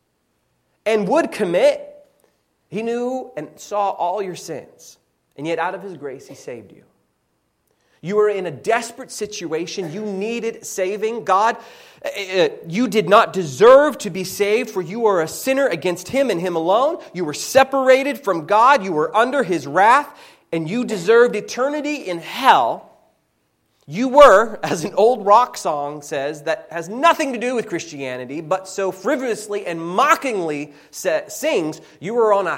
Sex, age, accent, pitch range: male, 30-49, American, 155-230 Hz